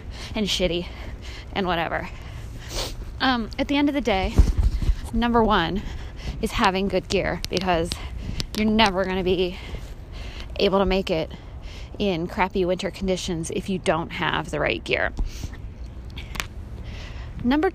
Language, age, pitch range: English, 20-39, 190-245 Hz